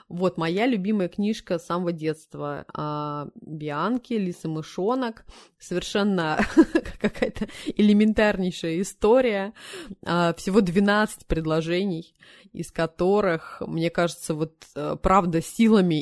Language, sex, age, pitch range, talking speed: Russian, female, 20-39, 165-205 Hz, 90 wpm